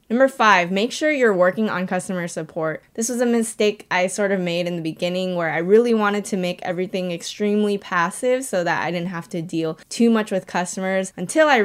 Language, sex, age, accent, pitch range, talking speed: English, female, 10-29, American, 170-205 Hz, 215 wpm